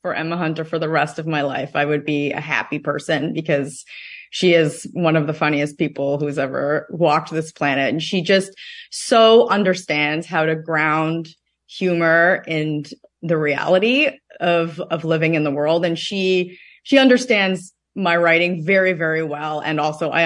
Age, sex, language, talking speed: 30-49, female, English, 170 wpm